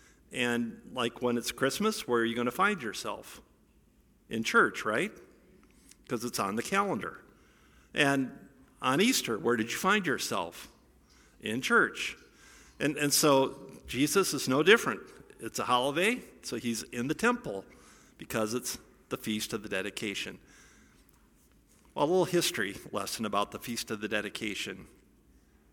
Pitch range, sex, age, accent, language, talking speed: 115-155 Hz, male, 50-69, American, English, 145 wpm